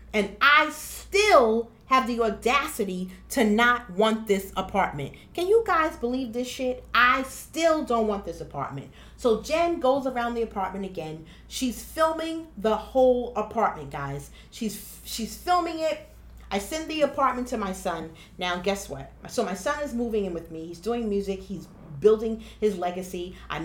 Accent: American